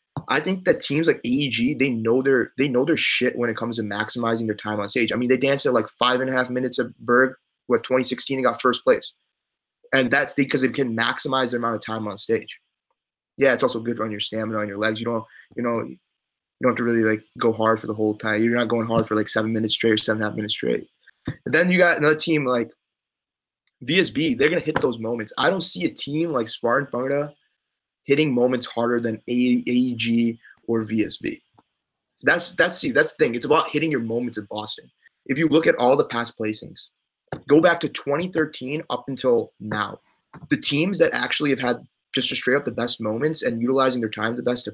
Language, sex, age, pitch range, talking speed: English, male, 20-39, 110-135 Hz, 230 wpm